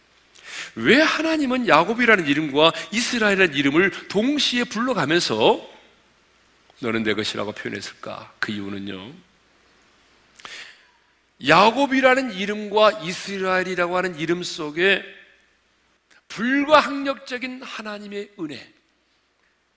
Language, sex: Korean, male